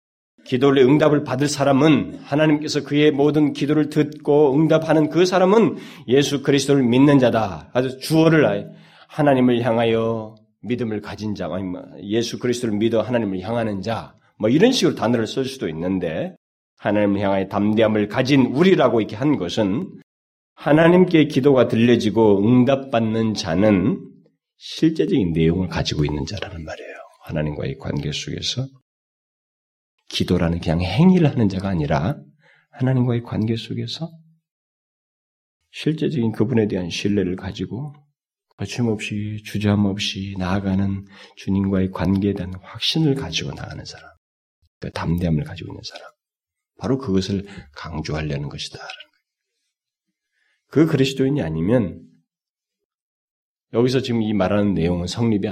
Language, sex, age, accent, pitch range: Korean, male, 40-59, native, 95-140 Hz